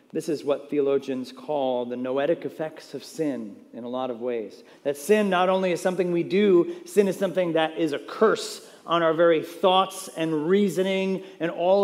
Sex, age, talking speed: male, 40-59, 195 wpm